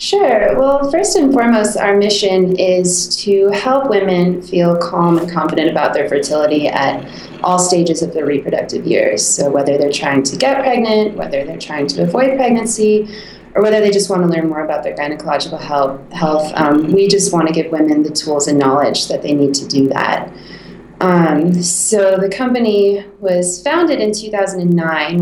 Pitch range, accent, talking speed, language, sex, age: 155-195 Hz, American, 180 wpm, English, female, 20-39